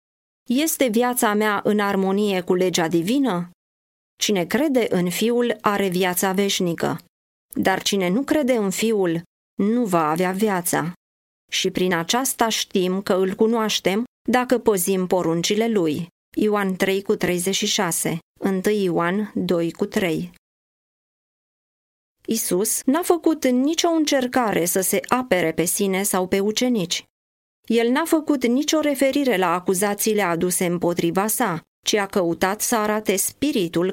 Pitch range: 180-235 Hz